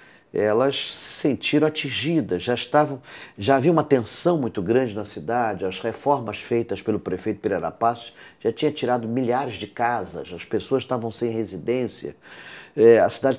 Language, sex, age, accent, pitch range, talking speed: Portuguese, male, 50-69, Brazilian, 110-150 Hz, 150 wpm